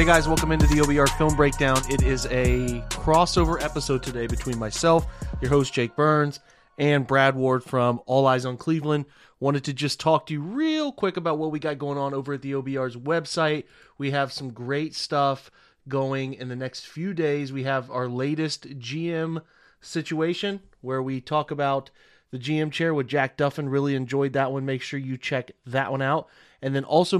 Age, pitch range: 30-49, 125-150 Hz